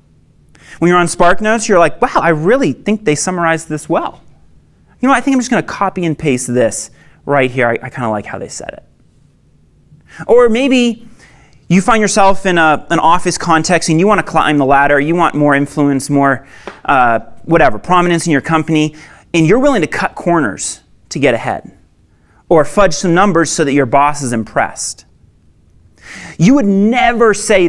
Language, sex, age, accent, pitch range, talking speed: English, male, 30-49, American, 135-180 Hz, 180 wpm